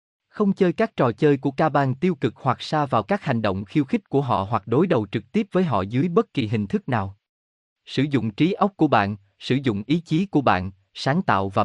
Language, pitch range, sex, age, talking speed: Vietnamese, 110-165 Hz, male, 20-39, 245 wpm